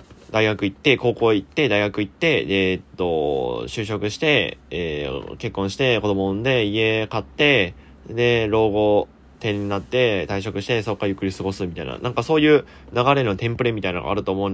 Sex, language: male, Japanese